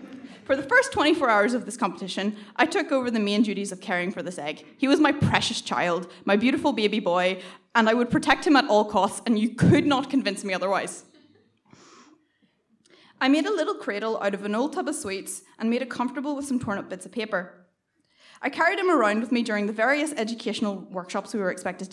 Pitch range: 200-280 Hz